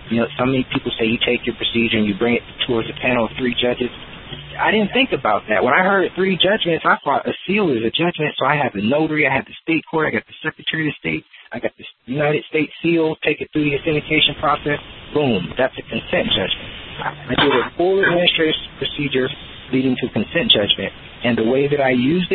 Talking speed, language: 235 wpm, English